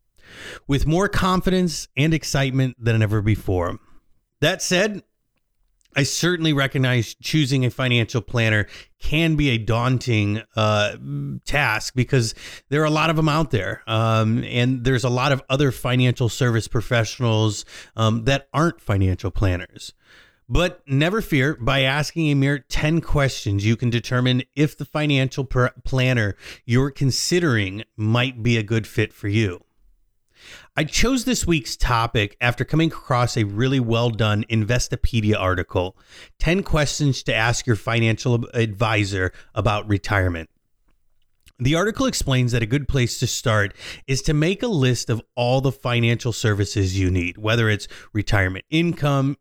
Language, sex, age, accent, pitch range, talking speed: English, male, 30-49, American, 110-145 Hz, 145 wpm